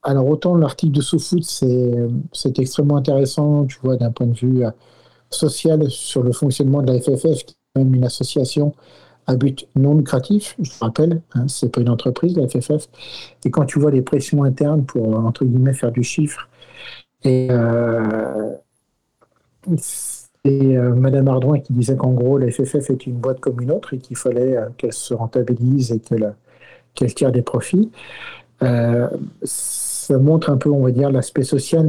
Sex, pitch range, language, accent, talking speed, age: male, 125-145 Hz, French, French, 180 wpm, 50-69